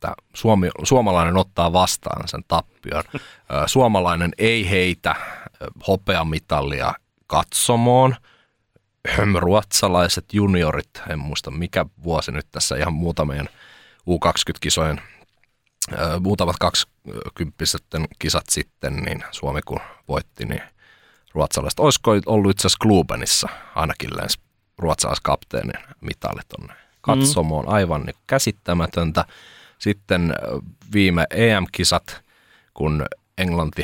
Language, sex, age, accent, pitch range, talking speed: Finnish, male, 30-49, native, 80-105 Hz, 85 wpm